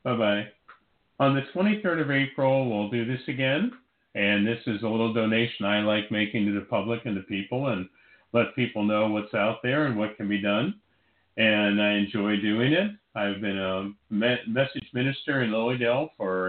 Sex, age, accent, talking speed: male, 50-69, American, 180 wpm